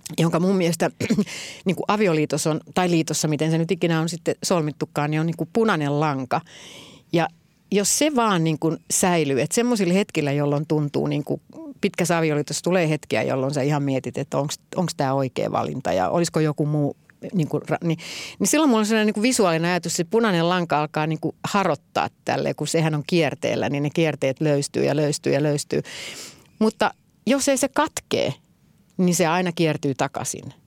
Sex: female